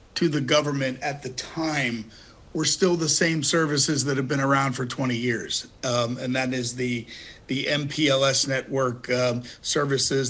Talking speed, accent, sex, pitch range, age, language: 165 wpm, American, male, 125-155 Hz, 50-69, English